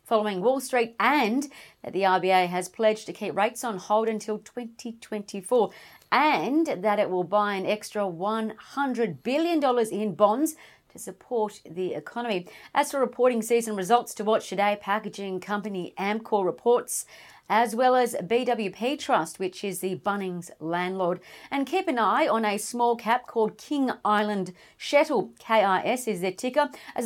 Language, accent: English, Australian